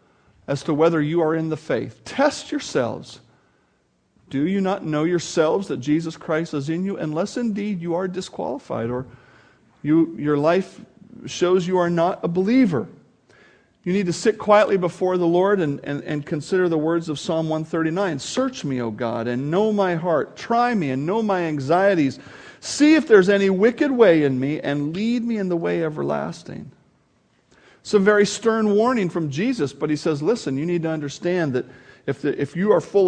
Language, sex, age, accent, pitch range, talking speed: English, male, 50-69, American, 150-200 Hz, 185 wpm